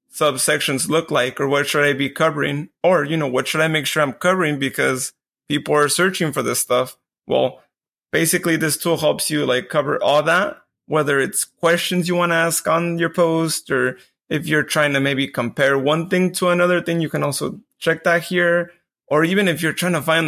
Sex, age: male, 20-39